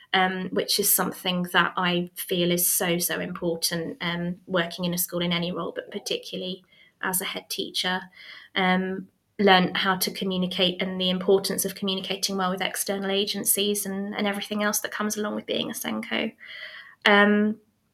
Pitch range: 185-210 Hz